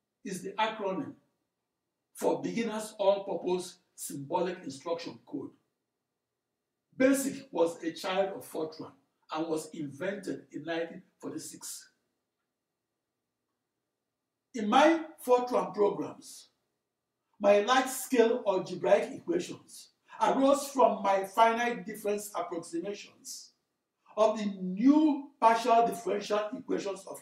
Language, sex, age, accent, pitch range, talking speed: English, male, 60-79, Nigerian, 195-270 Hz, 90 wpm